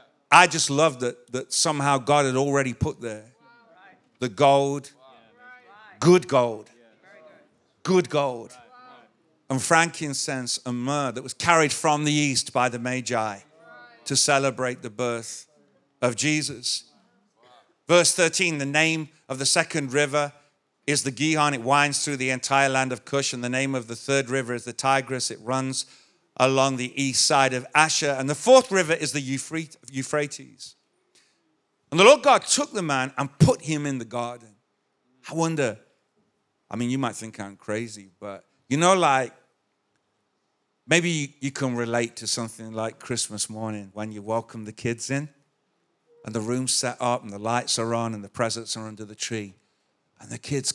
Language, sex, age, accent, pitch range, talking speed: English, male, 50-69, British, 120-150 Hz, 165 wpm